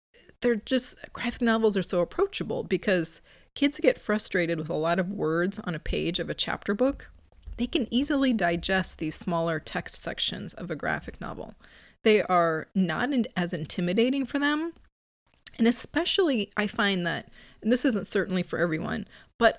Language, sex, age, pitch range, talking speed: English, female, 30-49, 170-235 Hz, 165 wpm